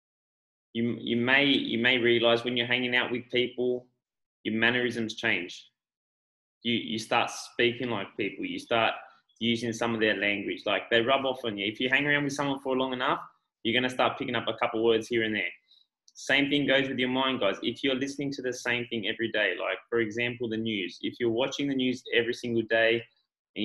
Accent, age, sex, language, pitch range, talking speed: Australian, 20-39, male, English, 115-140 Hz, 220 wpm